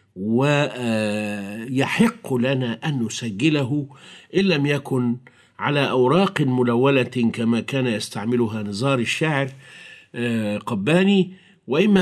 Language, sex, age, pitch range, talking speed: Arabic, male, 50-69, 120-155 Hz, 85 wpm